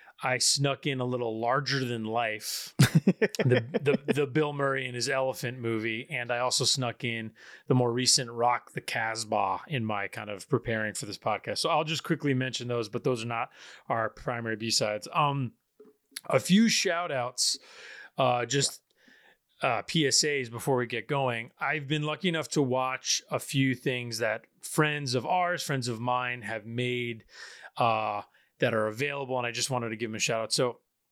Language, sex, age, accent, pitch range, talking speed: English, male, 30-49, American, 120-145 Hz, 180 wpm